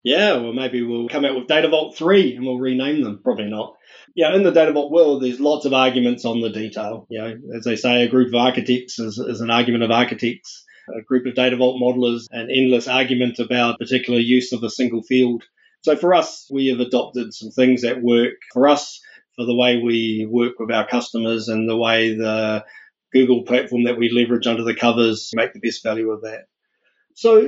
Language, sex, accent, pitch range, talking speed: English, male, Australian, 120-155 Hz, 215 wpm